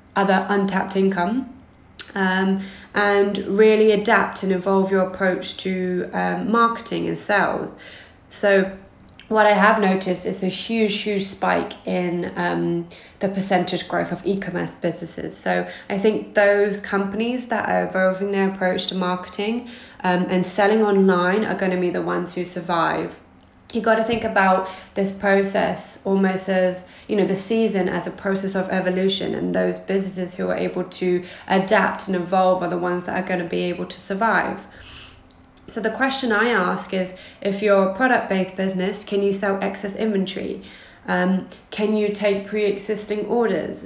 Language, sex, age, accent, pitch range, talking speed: English, female, 20-39, British, 185-205 Hz, 165 wpm